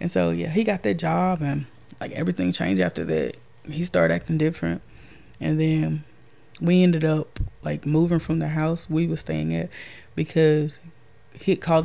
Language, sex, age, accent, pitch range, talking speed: English, female, 20-39, American, 150-185 Hz, 170 wpm